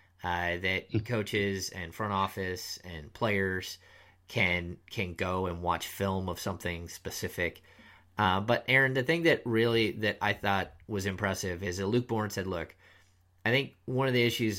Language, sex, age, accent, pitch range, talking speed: English, male, 30-49, American, 95-110 Hz, 170 wpm